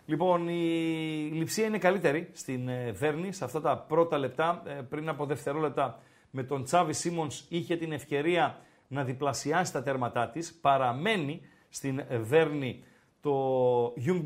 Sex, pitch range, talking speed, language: male, 135-175 Hz, 135 wpm, Greek